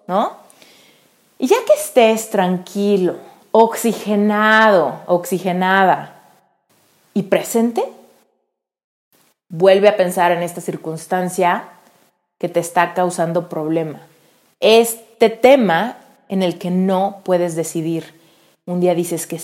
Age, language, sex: 30-49, Spanish, female